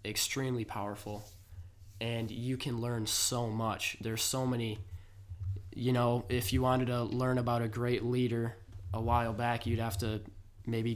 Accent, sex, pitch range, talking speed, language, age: American, male, 100-125 Hz, 160 wpm, English, 20-39